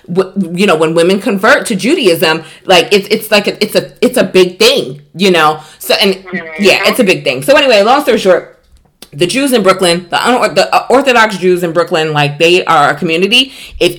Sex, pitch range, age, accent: female, 175-210 Hz, 20-39, American